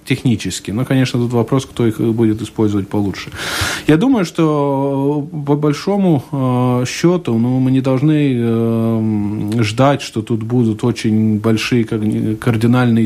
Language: Russian